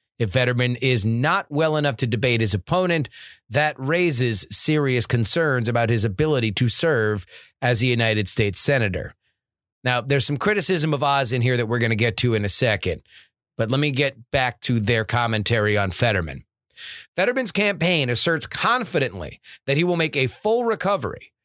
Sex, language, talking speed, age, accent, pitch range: male, English, 175 wpm, 30-49, American, 115-160 Hz